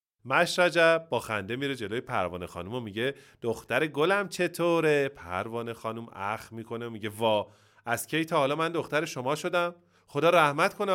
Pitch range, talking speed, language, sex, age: 110-165 Hz, 165 wpm, Persian, male, 30-49